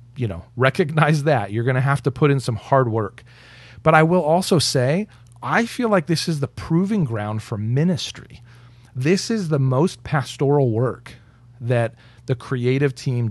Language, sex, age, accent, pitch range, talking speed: English, male, 40-59, American, 115-140 Hz, 170 wpm